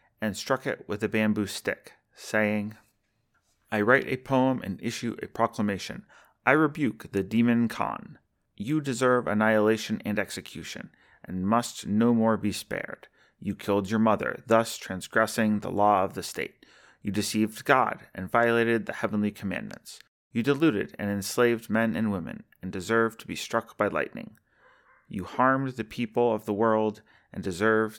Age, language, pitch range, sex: 30-49, English, 105-120 Hz, male